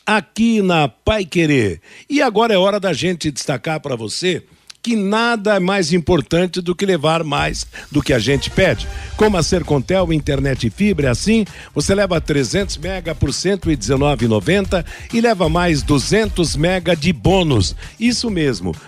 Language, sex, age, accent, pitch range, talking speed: Portuguese, male, 60-79, Brazilian, 140-190 Hz, 160 wpm